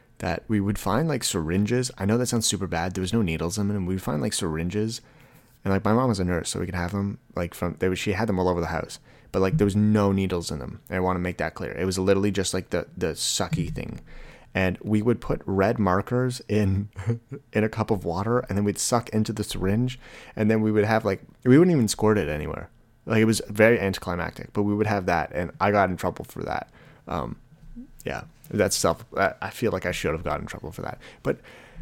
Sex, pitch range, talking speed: male, 95-115 Hz, 250 wpm